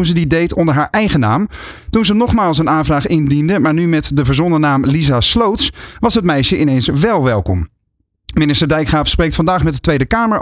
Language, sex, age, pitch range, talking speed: Dutch, male, 40-59, 145-185 Hz, 200 wpm